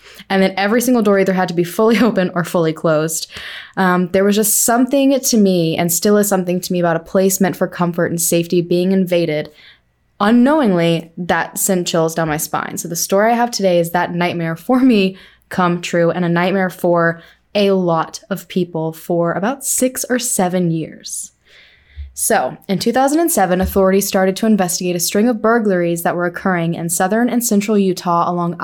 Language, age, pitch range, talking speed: English, 20-39, 175-210 Hz, 190 wpm